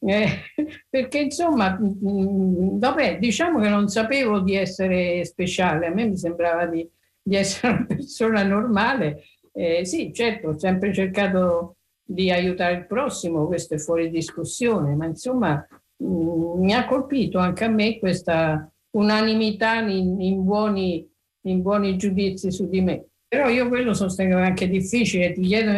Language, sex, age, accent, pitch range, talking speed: Italian, female, 50-69, native, 175-210 Hz, 145 wpm